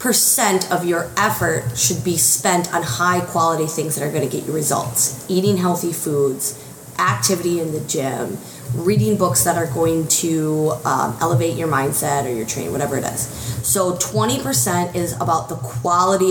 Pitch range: 150-180 Hz